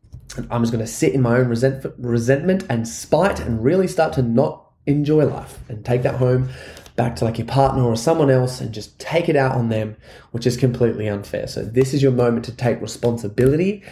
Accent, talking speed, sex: Australian, 210 wpm, male